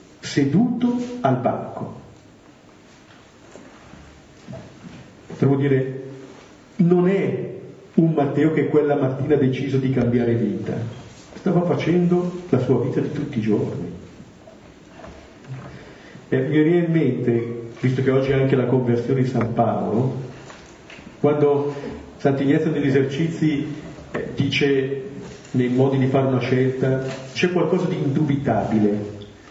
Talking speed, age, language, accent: 115 wpm, 40-59, Italian, native